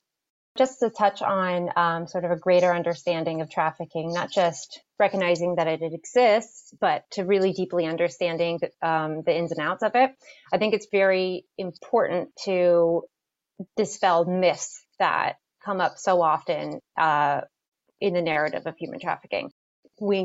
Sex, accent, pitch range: female, American, 170-195 Hz